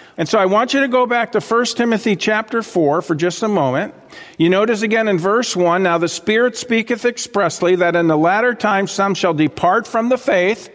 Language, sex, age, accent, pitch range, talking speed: English, male, 50-69, American, 170-225 Hz, 220 wpm